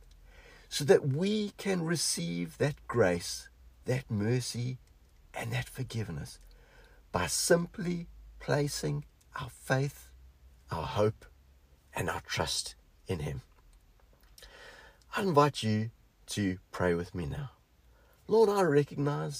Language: English